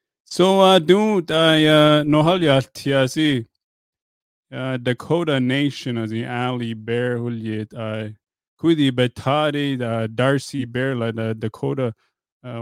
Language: English